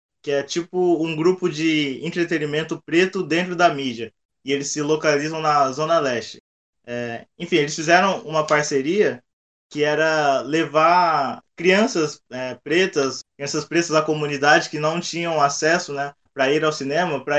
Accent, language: Brazilian, Portuguese